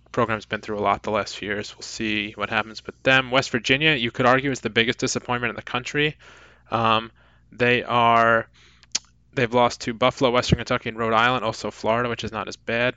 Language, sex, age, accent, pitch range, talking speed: English, male, 20-39, American, 110-135 Hz, 215 wpm